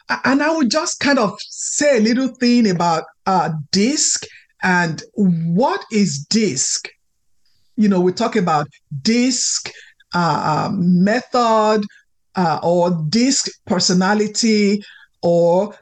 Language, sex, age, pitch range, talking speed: English, male, 50-69, 190-285 Hz, 115 wpm